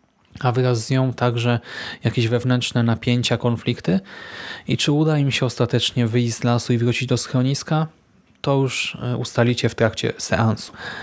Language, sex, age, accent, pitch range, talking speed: Polish, male, 20-39, native, 125-155 Hz, 150 wpm